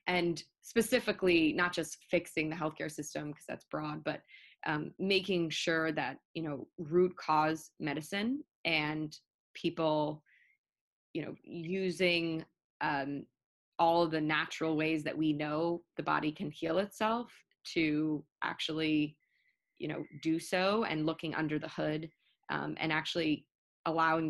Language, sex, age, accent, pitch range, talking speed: English, female, 20-39, American, 155-170 Hz, 135 wpm